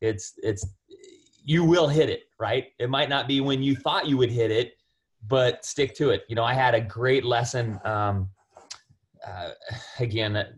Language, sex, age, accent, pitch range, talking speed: English, male, 30-49, American, 110-135 Hz, 180 wpm